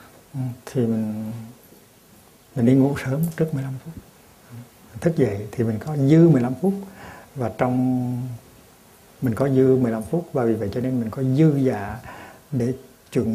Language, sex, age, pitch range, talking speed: Vietnamese, male, 60-79, 110-130 Hz, 155 wpm